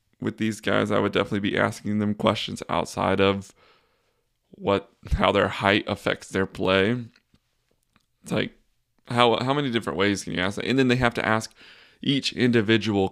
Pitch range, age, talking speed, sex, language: 100-120 Hz, 20-39, 175 wpm, male, English